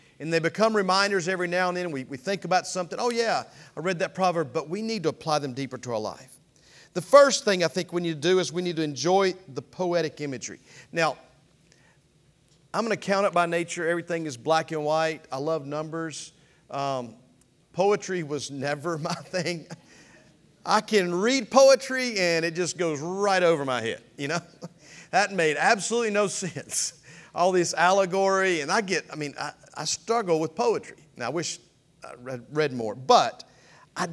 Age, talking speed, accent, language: 40-59, 190 wpm, American, English